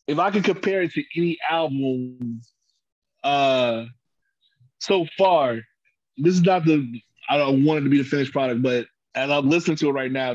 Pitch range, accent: 125-160 Hz, American